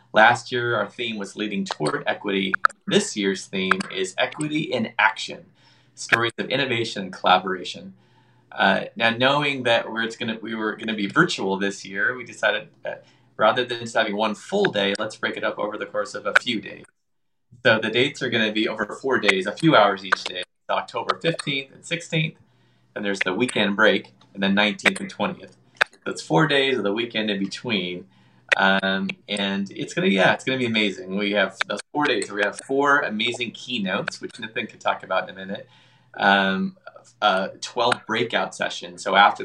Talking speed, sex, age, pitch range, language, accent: 190 wpm, male, 30-49, 95-120 Hz, English, American